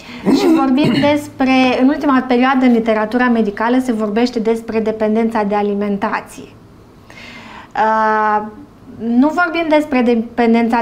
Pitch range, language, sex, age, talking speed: 220-255 Hz, Romanian, female, 20-39, 110 wpm